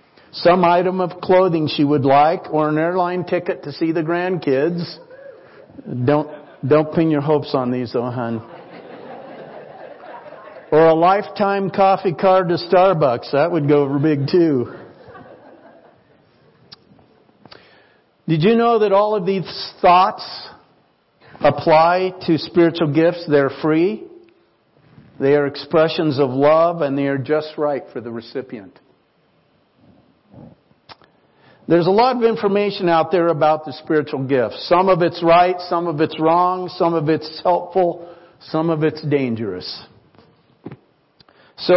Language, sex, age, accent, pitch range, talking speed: English, male, 50-69, American, 150-185 Hz, 130 wpm